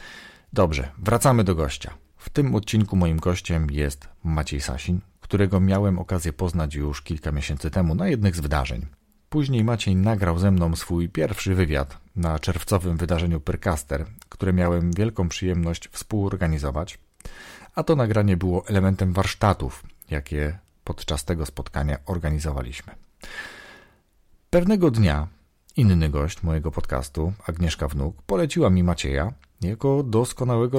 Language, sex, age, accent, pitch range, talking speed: Polish, male, 40-59, native, 75-100 Hz, 125 wpm